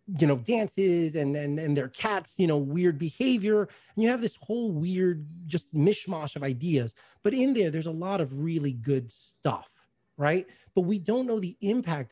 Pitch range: 135-175 Hz